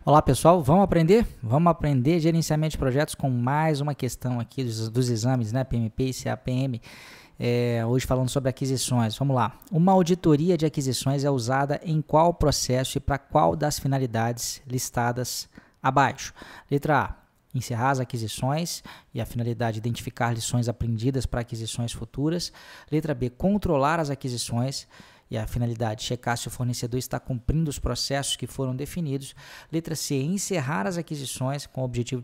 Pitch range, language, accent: 125-155 Hz, Portuguese, Brazilian